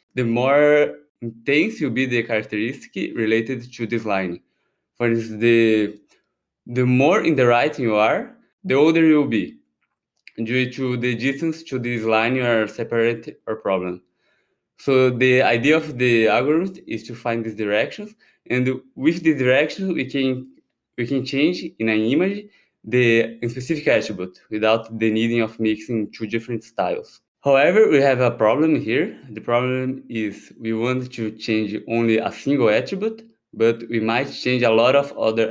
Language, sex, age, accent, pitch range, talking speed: English, male, 20-39, Brazilian, 115-135 Hz, 160 wpm